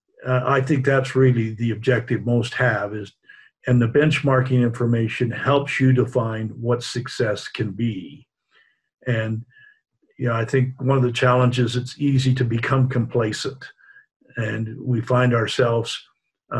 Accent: American